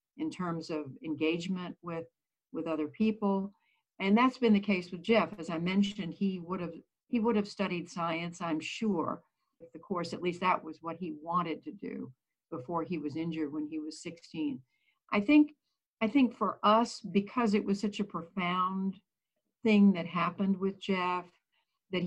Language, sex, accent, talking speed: English, female, American, 180 wpm